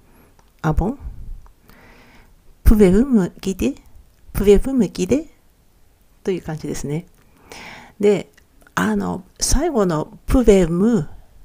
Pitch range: 160-230 Hz